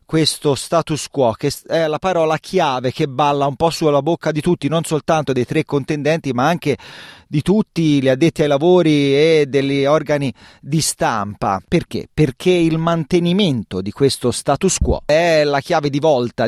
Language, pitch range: Italian, 120-155 Hz